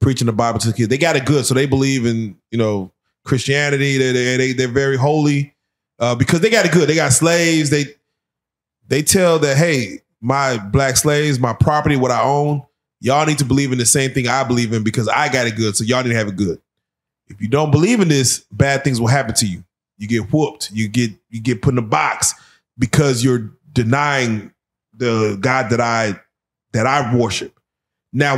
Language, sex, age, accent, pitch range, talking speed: English, male, 20-39, American, 120-150 Hz, 215 wpm